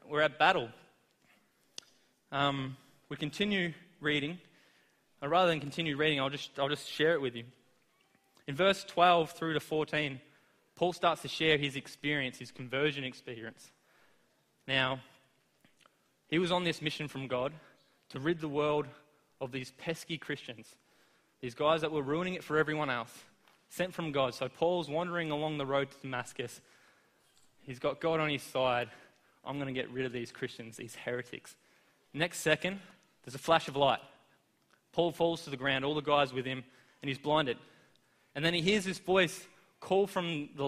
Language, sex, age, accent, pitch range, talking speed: English, male, 20-39, Australian, 135-170 Hz, 170 wpm